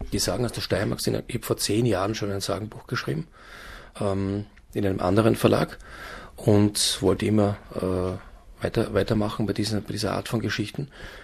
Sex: male